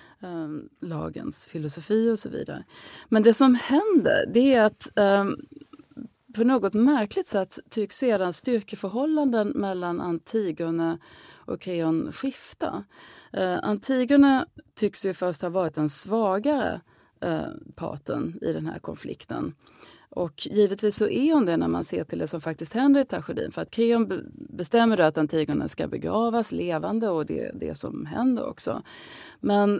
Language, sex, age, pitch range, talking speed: Swedish, female, 30-49, 160-235 Hz, 150 wpm